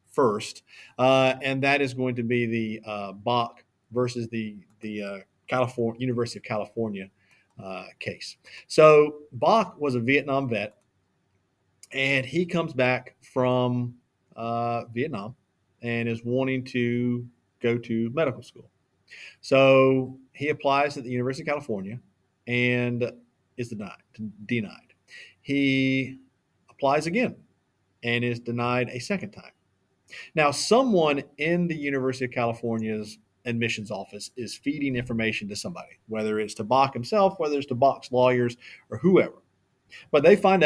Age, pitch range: 40-59, 115-140 Hz